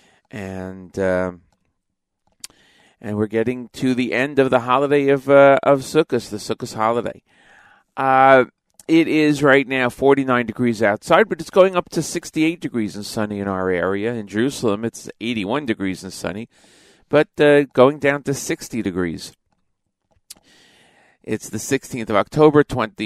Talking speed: 150 wpm